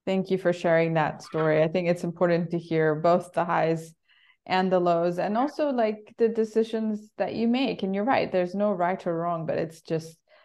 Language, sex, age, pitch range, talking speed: English, female, 20-39, 160-205 Hz, 210 wpm